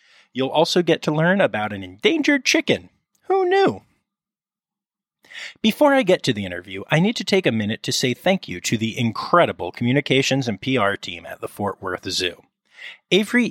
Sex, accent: male, American